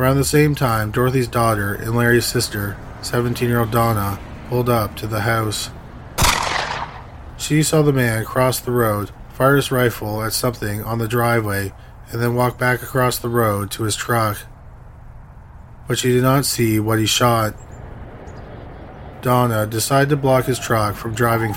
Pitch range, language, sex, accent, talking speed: 105-120 Hz, English, male, American, 160 wpm